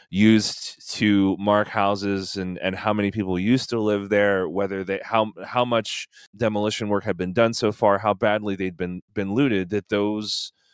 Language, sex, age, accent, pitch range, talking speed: English, male, 20-39, American, 90-110 Hz, 185 wpm